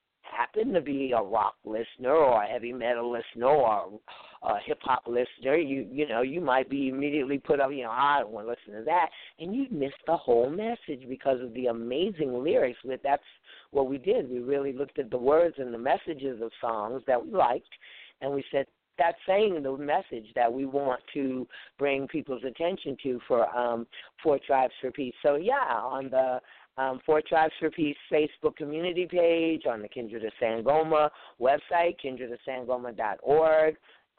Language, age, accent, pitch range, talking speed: English, 50-69, American, 125-155 Hz, 180 wpm